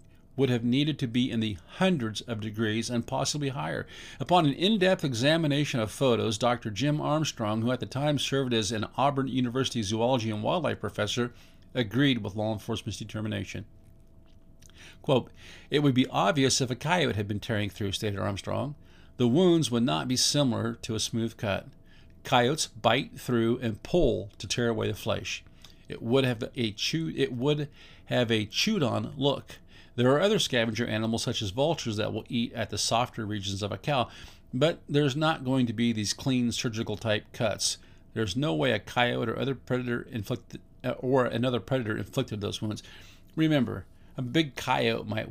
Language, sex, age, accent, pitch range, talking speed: English, male, 50-69, American, 105-135 Hz, 175 wpm